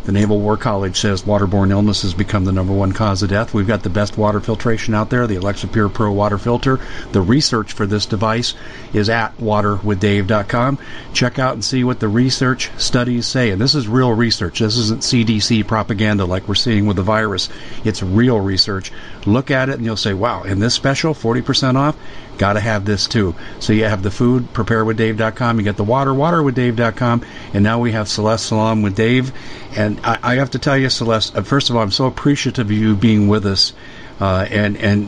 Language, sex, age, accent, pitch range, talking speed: English, male, 50-69, American, 105-120 Hz, 205 wpm